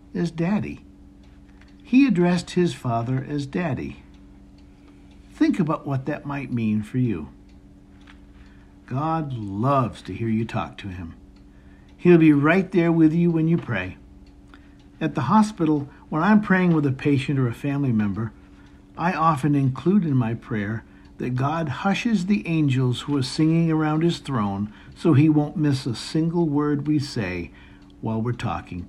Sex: male